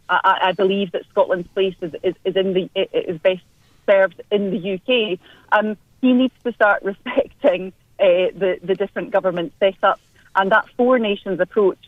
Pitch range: 175-210 Hz